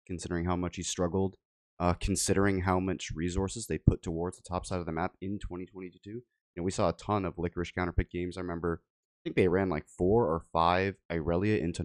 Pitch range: 80-95 Hz